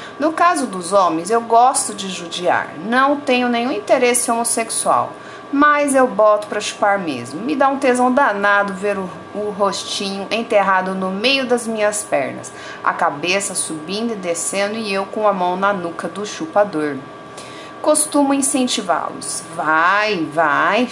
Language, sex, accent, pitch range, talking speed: Portuguese, female, Brazilian, 185-240 Hz, 150 wpm